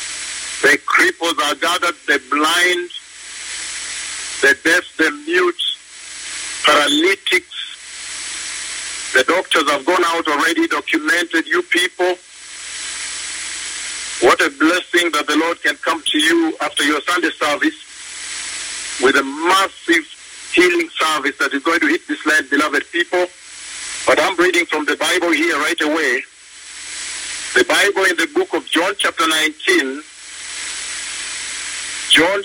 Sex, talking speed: male, 120 wpm